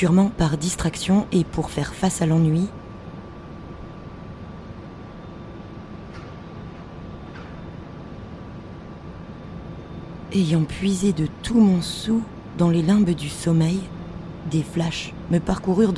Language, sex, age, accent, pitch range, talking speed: French, female, 20-39, French, 150-185 Hz, 90 wpm